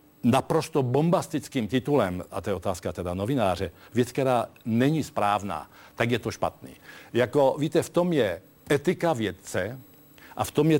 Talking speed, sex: 155 wpm, male